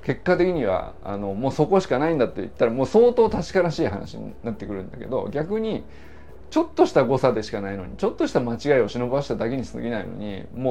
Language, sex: Japanese, male